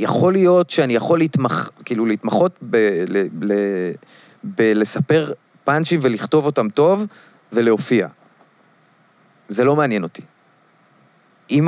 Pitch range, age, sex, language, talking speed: 100-135 Hz, 30-49, male, Hebrew, 110 wpm